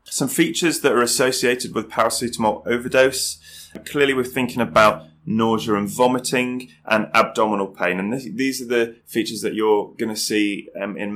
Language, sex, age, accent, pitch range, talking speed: English, male, 20-39, British, 100-125 Hz, 155 wpm